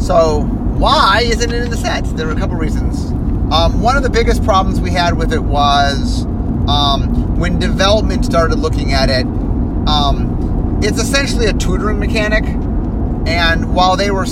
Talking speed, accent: 170 wpm, American